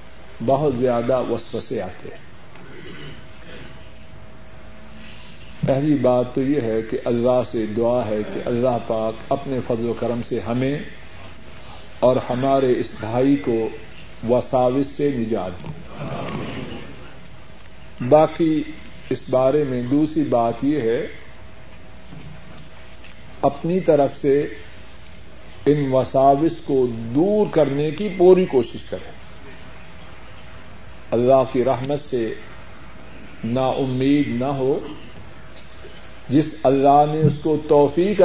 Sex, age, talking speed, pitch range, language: male, 50-69, 105 wpm, 115-145 Hz, Urdu